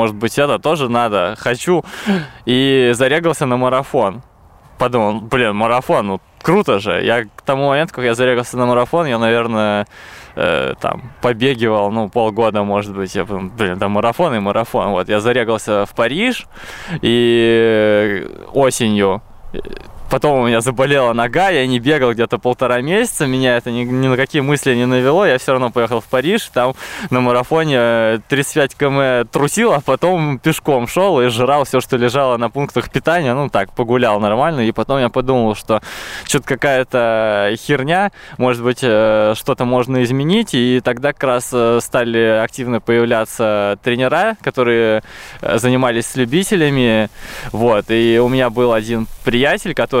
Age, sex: 20-39, male